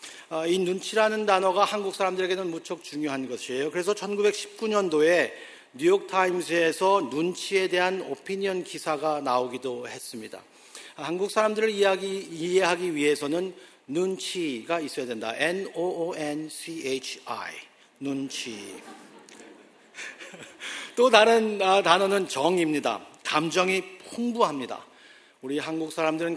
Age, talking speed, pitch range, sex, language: 50-69, 100 wpm, 150-195 Hz, male, English